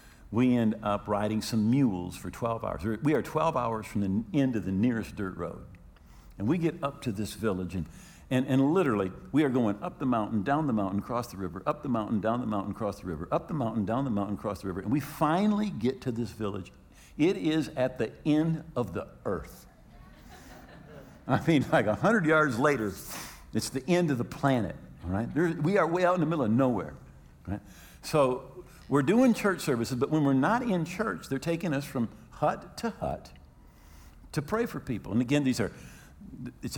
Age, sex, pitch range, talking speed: 60-79, male, 95-140 Hz, 210 wpm